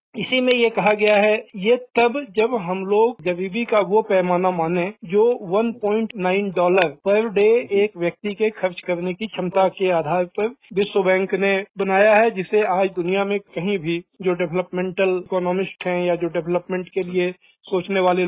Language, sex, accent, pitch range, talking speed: Hindi, male, native, 175-215 Hz, 175 wpm